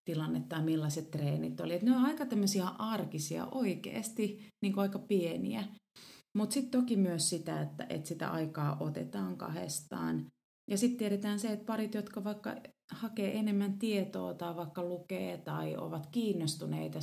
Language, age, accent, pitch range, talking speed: Finnish, 30-49, native, 150-205 Hz, 145 wpm